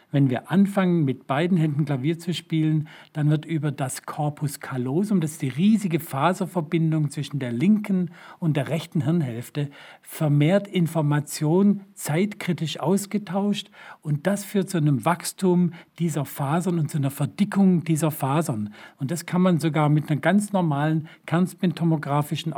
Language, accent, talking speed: German, German, 145 wpm